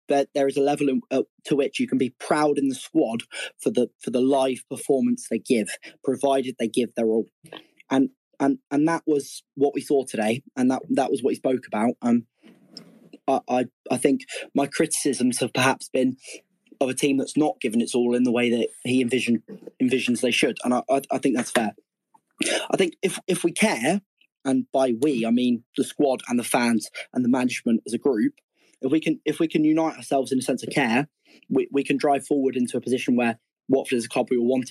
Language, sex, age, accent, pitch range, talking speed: English, male, 20-39, British, 125-150 Hz, 230 wpm